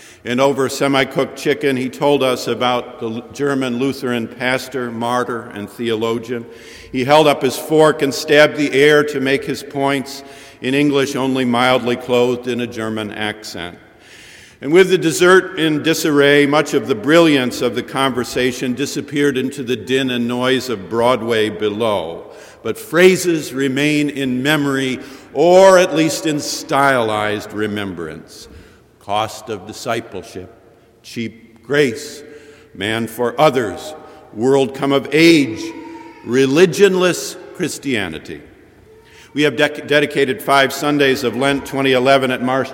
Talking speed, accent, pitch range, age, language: 130 wpm, American, 120-150 Hz, 50-69, English